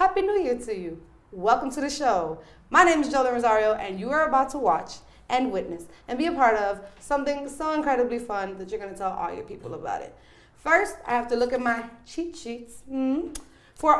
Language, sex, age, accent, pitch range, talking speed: English, female, 20-39, American, 200-290 Hz, 225 wpm